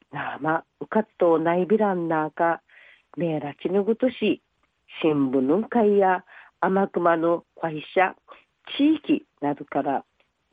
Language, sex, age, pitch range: Japanese, female, 50-69, 170-235 Hz